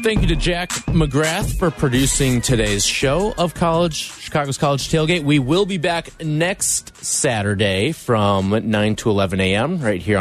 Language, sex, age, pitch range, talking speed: English, male, 30-49, 105-155 Hz, 160 wpm